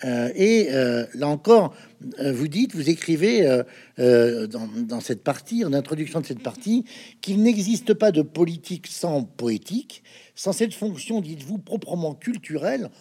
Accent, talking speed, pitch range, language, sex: French, 150 wpm, 125-210 Hz, French, male